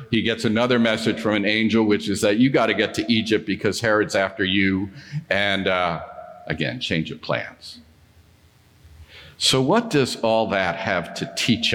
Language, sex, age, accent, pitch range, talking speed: English, male, 50-69, American, 90-120 Hz, 175 wpm